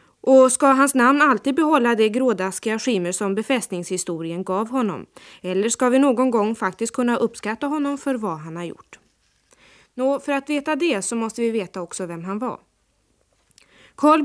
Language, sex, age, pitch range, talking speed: Swedish, female, 20-39, 190-260 Hz, 175 wpm